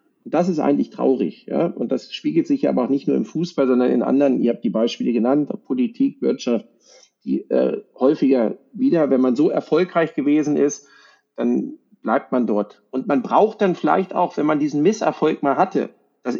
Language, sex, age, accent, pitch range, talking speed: German, male, 40-59, German, 130-185 Hz, 200 wpm